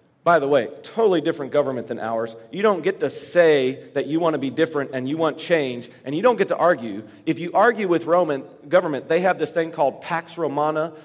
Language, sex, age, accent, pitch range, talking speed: English, male, 40-59, American, 140-185 Hz, 230 wpm